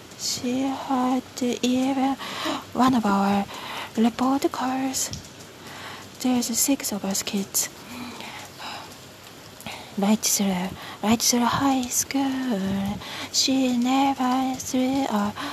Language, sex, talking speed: English, female, 90 wpm